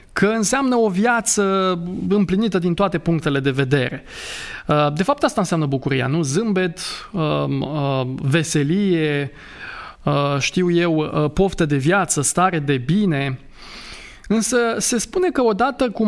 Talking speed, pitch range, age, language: 120 wpm, 145-195 Hz, 20-39, Romanian